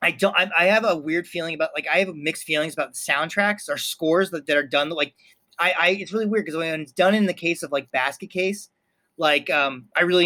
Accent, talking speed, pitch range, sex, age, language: American, 250 wpm, 150-190 Hz, male, 30-49, English